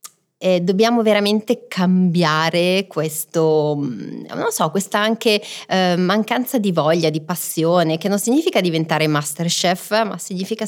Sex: female